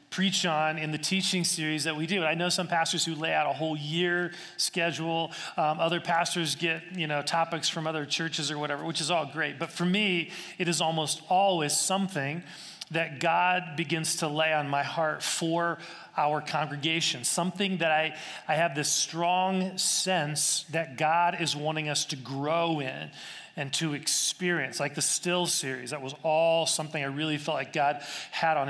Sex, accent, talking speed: male, American, 185 wpm